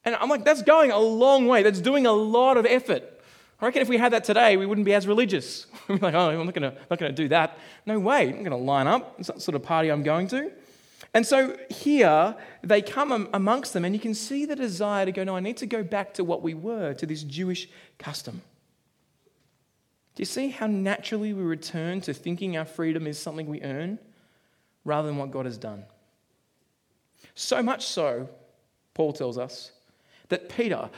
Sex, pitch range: male, 165-230 Hz